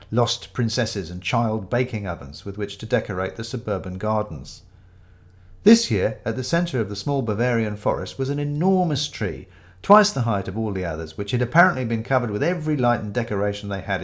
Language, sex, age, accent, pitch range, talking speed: English, male, 50-69, British, 90-130 Hz, 195 wpm